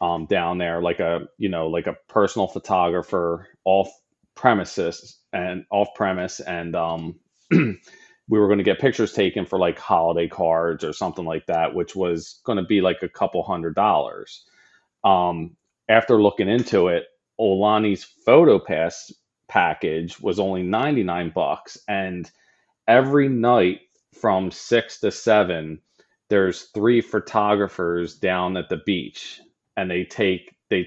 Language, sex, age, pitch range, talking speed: English, male, 30-49, 90-105 Hz, 140 wpm